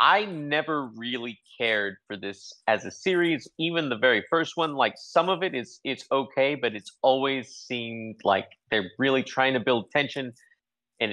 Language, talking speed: English, 180 wpm